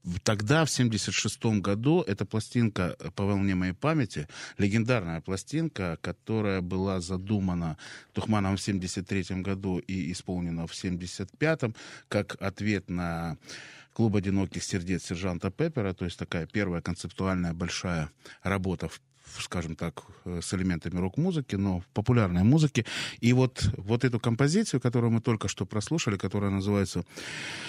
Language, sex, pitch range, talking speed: Russian, male, 90-125 Hz, 130 wpm